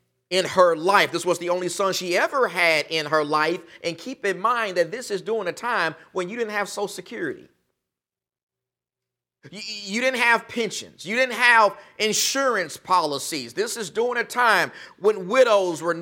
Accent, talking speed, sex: American, 180 wpm, male